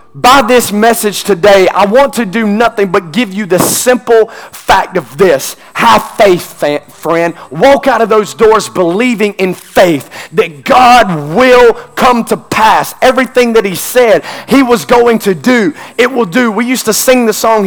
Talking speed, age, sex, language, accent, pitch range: 175 wpm, 30-49, male, English, American, 210-255 Hz